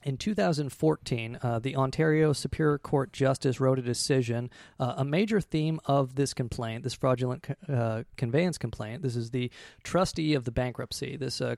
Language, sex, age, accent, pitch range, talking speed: English, male, 30-49, American, 125-150 Hz, 165 wpm